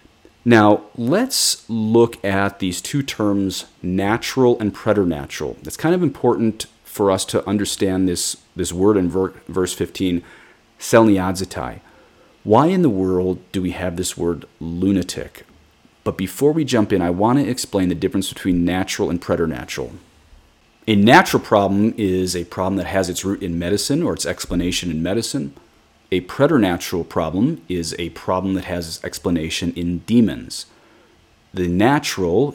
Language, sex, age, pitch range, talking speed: English, male, 40-59, 90-105 Hz, 145 wpm